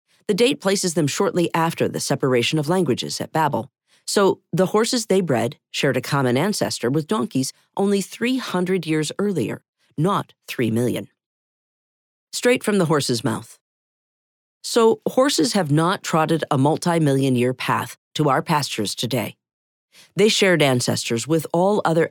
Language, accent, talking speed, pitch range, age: English, American, 145 wpm, 135-185 Hz, 40-59